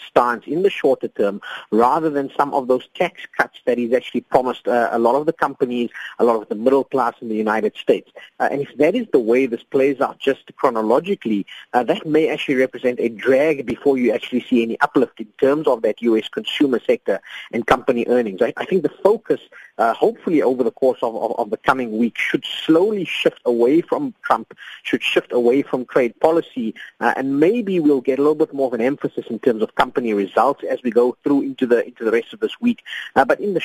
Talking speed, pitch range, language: 225 wpm, 120-150 Hz, English